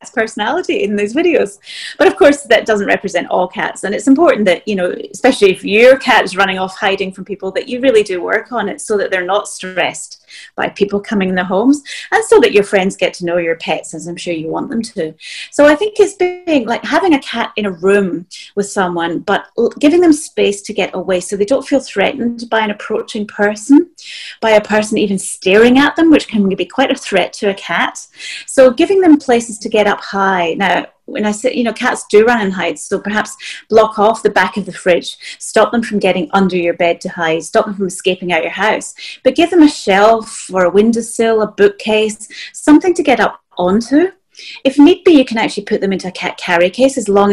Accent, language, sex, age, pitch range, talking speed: British, English, female, 30-49, 195-270 Hz, 230 wpm